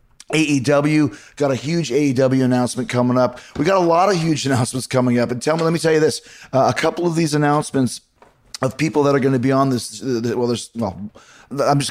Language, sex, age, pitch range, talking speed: English, male, 30-49, 115-140 Hz, 230 wpm